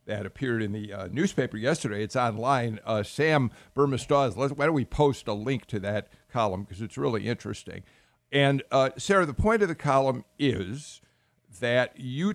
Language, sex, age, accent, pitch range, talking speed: English, male, 50-69, American, 115-155 Hz, 175 wpm